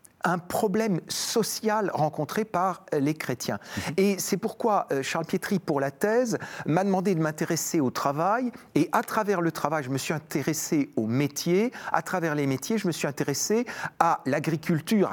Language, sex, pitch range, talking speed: French, male, 160-215 Hz, 165 wpm